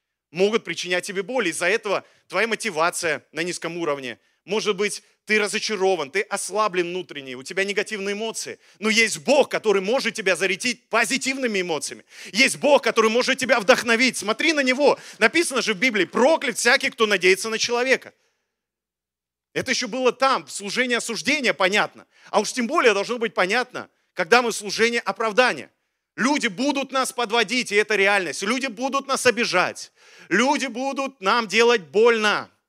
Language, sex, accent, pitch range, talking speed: Russian, male, native, 190-250 Hz, 155 wpm